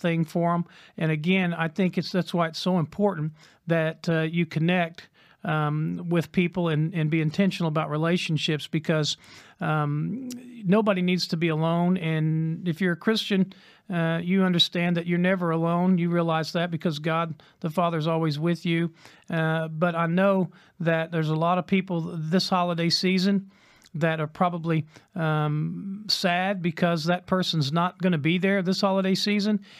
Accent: American